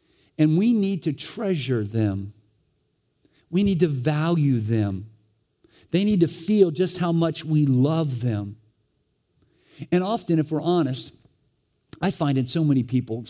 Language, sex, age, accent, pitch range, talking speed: English, male, 50-69, American, 135-185 Hz, 145 wpm